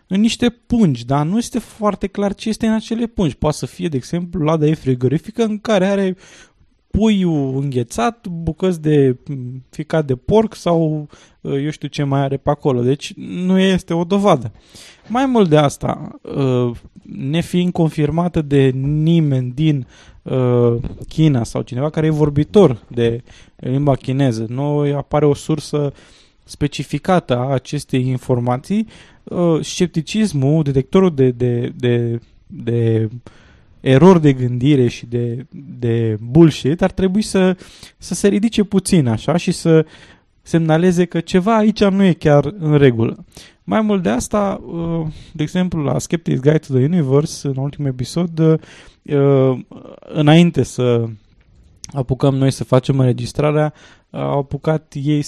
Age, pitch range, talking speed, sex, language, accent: 20-39, 130-180 Hz, 140 wpm, male, Romanian, native